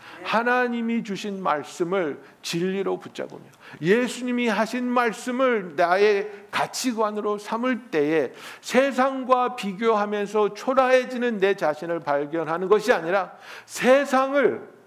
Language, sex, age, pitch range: Korean, male, 50-69, 195-245 Hz